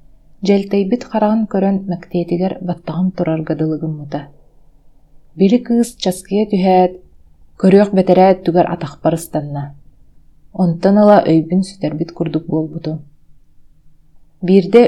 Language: Russian